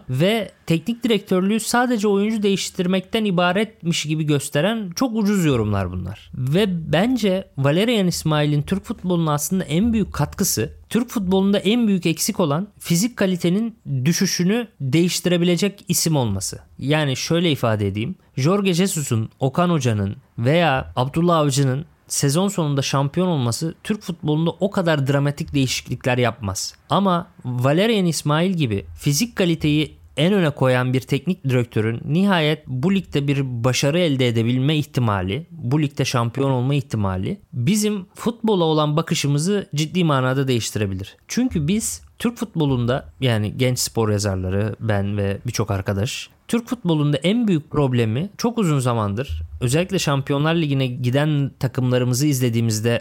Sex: male